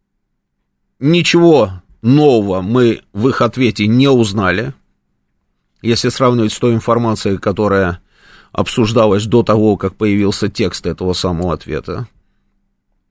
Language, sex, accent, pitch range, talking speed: Russian, male, native, 110-135 Hz, 105 wpm